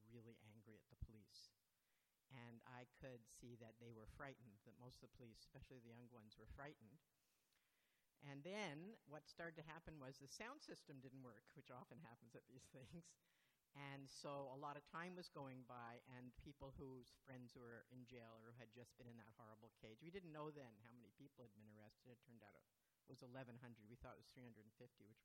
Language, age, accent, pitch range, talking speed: English, 60-79, American, 120-145 Hz, 210 wpm